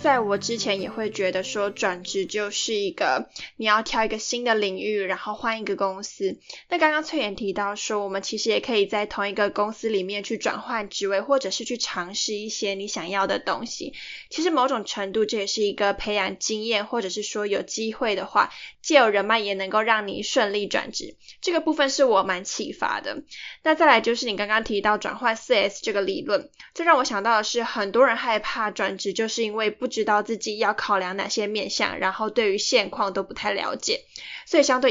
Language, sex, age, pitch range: Chinese, female, 10-29, 205-250 Hz